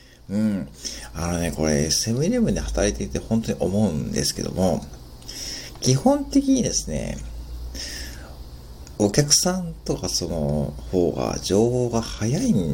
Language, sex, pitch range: Japanese, male, 70-110 Hz